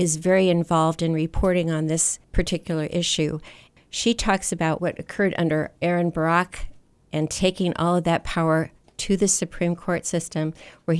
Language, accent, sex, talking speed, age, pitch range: English, American, female, 160 wpm, 50-69, 160-185 Hz